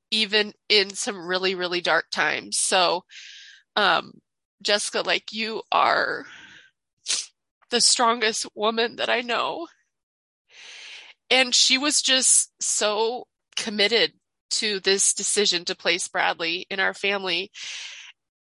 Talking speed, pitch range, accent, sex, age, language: 110 wpm, 220-300 Hz, American, female, 20-39, English